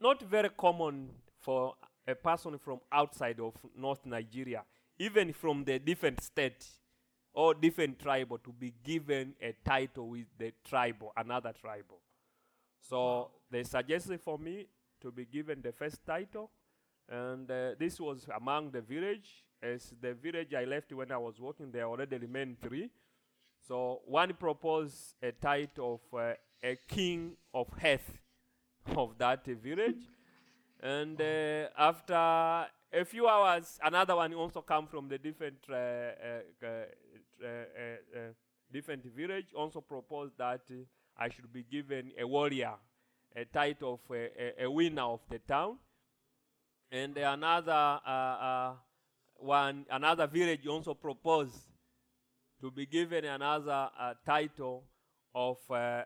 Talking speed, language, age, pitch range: 140 wpm, English, 30-49, 125-155 Hz